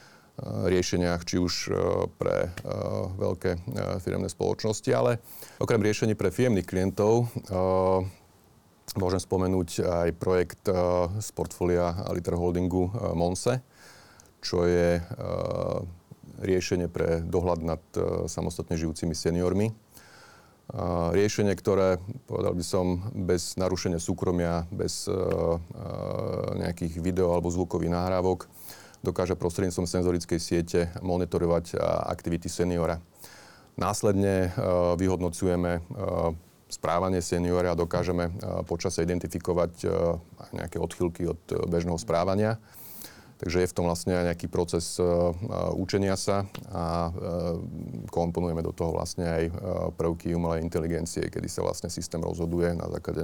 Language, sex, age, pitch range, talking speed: Slovak, male, 40-59, 85-95 Hz, 105 wpm